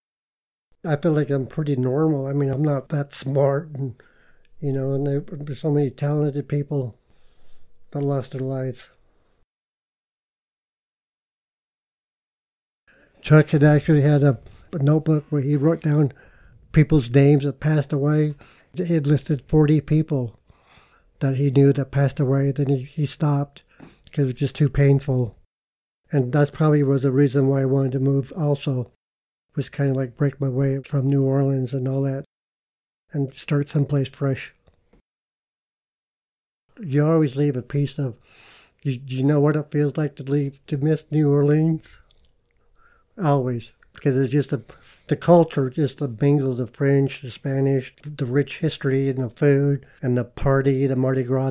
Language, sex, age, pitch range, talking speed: English, male, 60-79, 135-150 Hz, 155 wpm